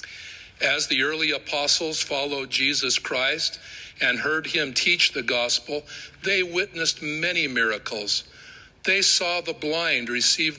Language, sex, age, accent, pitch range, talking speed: English, male, 50-69, American, 110-155 Hz, 125 wpm